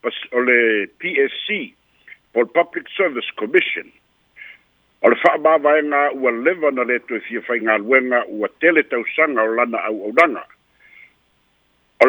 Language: English